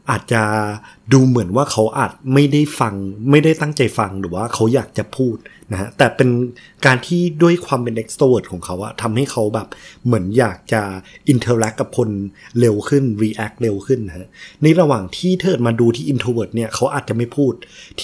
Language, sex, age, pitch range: Thai, male, 30-49, 110-140 Hz